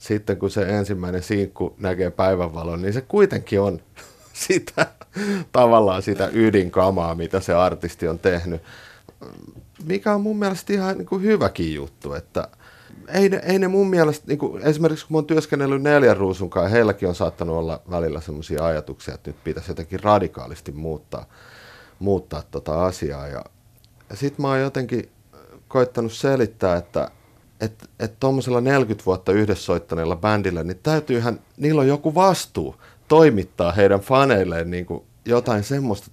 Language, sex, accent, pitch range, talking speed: Finnish, male, native, 85-130 Hz, 140 wpm